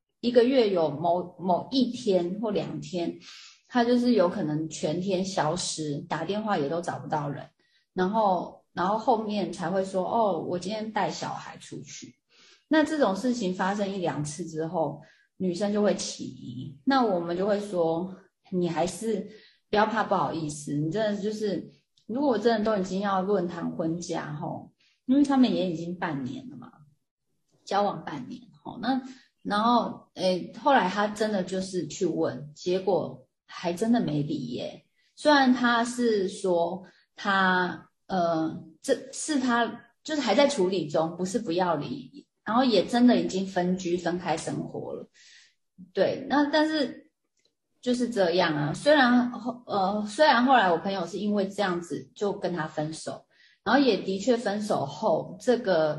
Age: 30-49